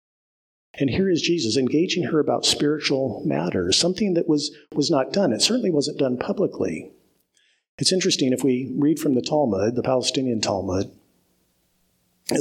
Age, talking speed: 50-69, 155 wpm